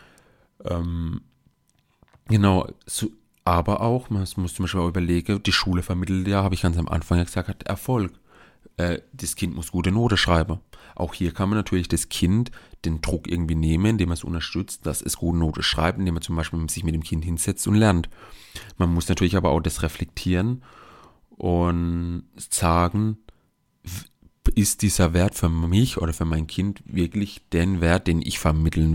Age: 30-49